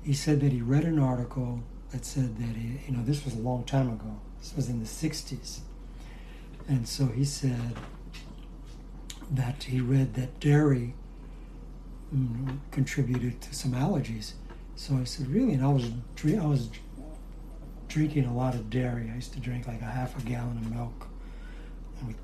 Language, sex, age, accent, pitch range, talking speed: English, male, 60-79, American, 120-140 Hz, 175 wpm